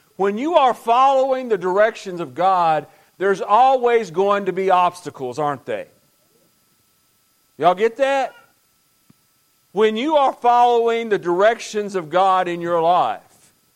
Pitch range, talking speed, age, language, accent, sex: 185-245 Hz, 130 wpm, 50-69, English, American, male